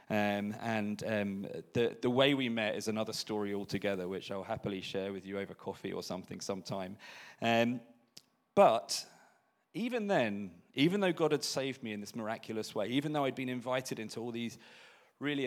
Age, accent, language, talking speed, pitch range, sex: 30-49, British, English, 180 wpm, 105-130 Hz, male